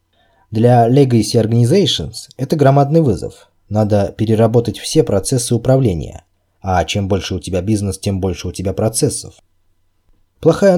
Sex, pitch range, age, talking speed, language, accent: male, 95-120 Hz, 20-39, 130 wpm, Russian, native